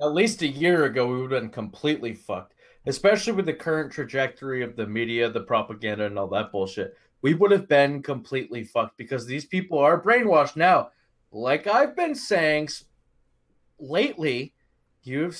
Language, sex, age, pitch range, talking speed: English, male, 20-39, 125-185 Hz, 170 wpm